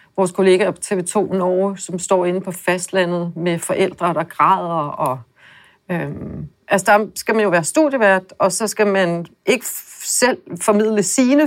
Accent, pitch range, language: native, 185-220 Hz, Danish